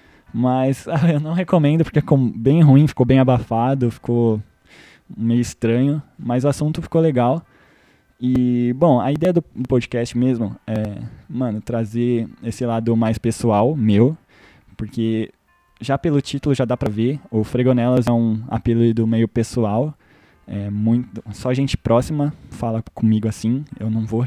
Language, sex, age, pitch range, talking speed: Portuguese, male, 20-39, 115-135 Hz, 150 wpm